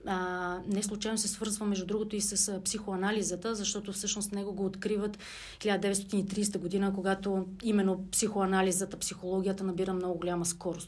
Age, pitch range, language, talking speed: 40-59, 185-210 Hz, Bulgarian, 130 wpm